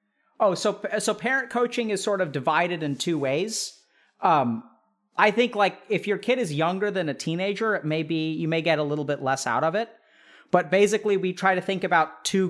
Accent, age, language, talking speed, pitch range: American, 40-59, English, 215 wpm, 155-205 Hz